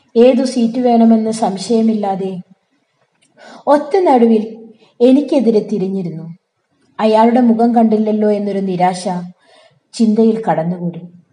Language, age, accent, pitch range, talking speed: Malayalam, 20-39, native, 195-245 Hz, 80 wpm